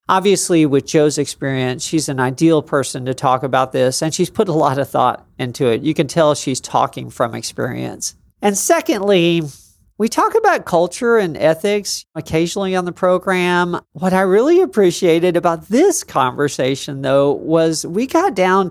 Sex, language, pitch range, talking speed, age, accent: male, English, 140-190 Hz, 165 wpm, 40-59, American